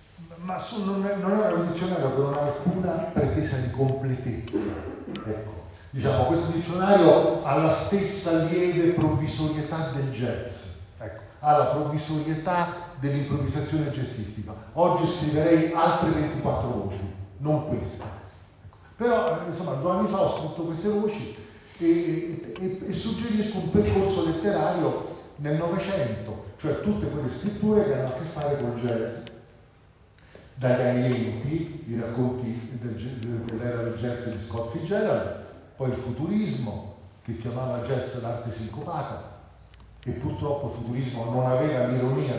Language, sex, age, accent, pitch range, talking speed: Italian, male, 40-59, native, 115-160 Hz, 130 wpm